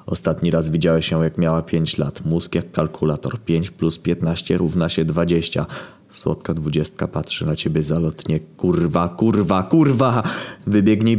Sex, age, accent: male, 20-39, native